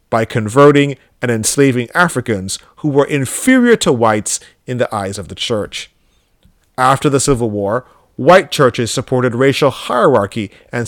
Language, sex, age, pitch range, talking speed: English, male, 30-49, 115-155 Hz, 145 wpm